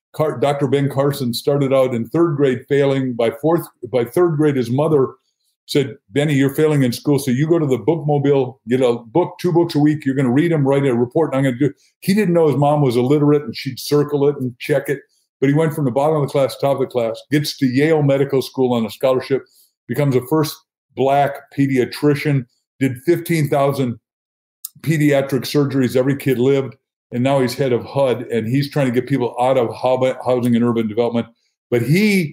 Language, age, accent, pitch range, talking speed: English, 50-69, American, 125-145 Hz, 215 wpm